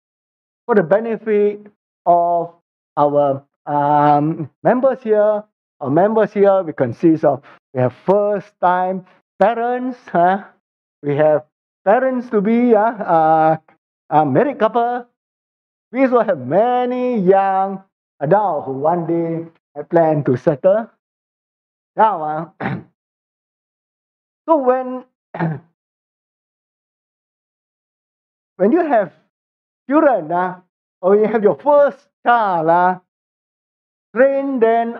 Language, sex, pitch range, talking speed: English, male, 165-230 Hz, 105 wpm